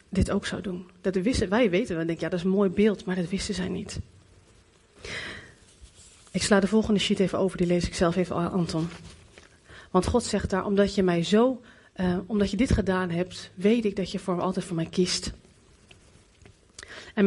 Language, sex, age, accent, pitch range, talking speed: Dutch, female, 30-49, Dutch, 180-230 Hz, 205 wpm